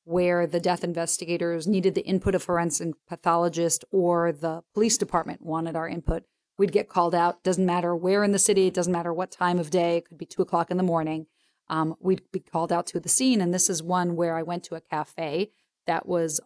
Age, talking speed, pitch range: 40-59, 225 wpm, 170-185 Hz